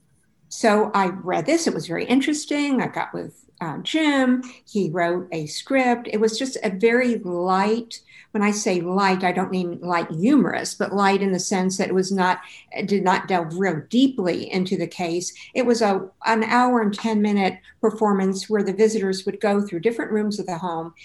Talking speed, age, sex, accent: 200 wpm, 50-69, female, American